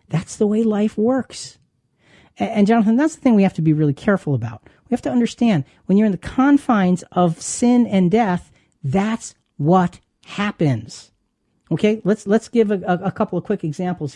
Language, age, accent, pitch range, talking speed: English, 40-59, American, 155-220 Hz, 185 wpm